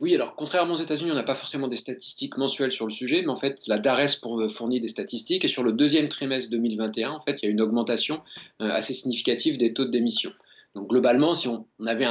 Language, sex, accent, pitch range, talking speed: French, male, French, 110-135 Hz, 235 wpm